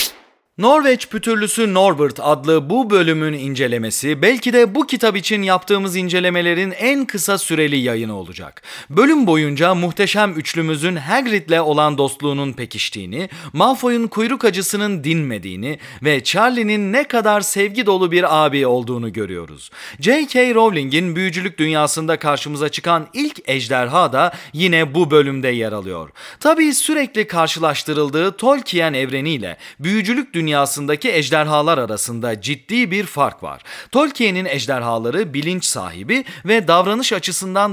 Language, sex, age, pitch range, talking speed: Turkish, male, 40-59, 145-210 Hz, 120 wpm